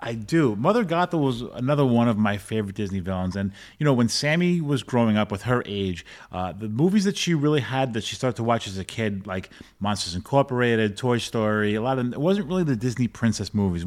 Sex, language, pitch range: male, English, 100-130 Hz